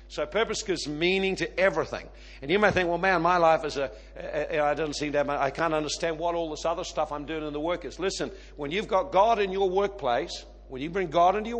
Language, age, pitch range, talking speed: English, 50-69, 160-200 Hz, 230 wpm